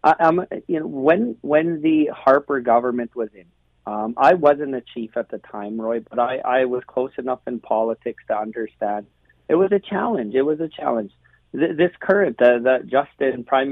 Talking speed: 195 wpm